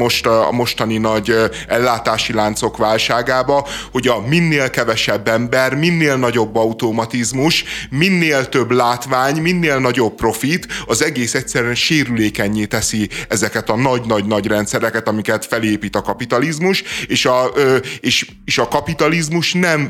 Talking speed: 125 wpm